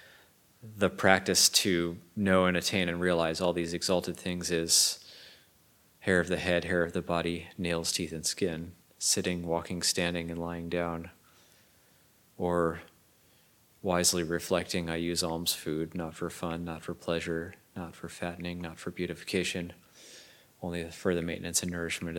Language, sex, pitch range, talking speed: English, male, 85-90 Hz, 150 wpm